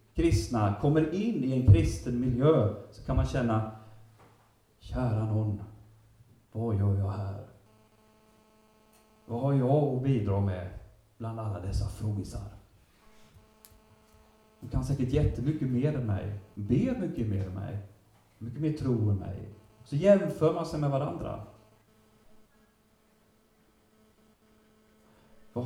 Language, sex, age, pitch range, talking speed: Swedish, male, 30-49, 110-160 Hz, 120 wpm